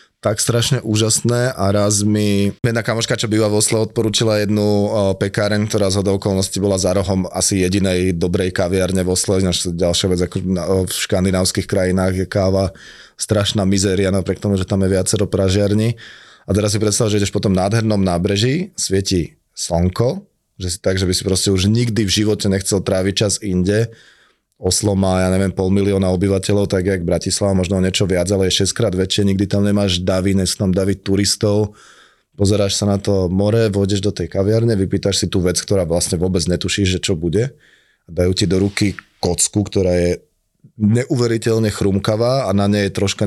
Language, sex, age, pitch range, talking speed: Slovak, male, 20-39, 95-105 Hz, 180 wpm